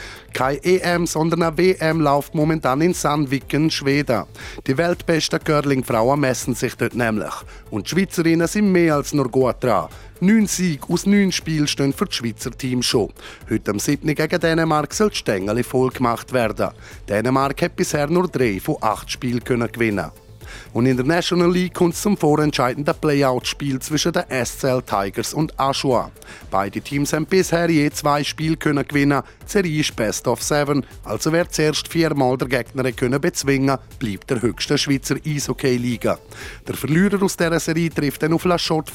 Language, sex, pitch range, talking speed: German, male, 125-165 Hz, 170 wpm